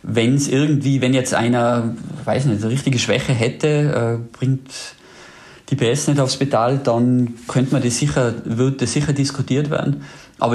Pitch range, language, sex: 115-135 Hz, German, male